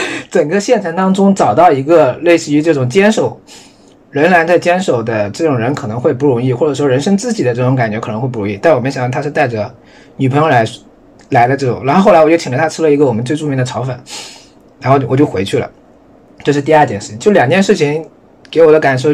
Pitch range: 125-165 Hz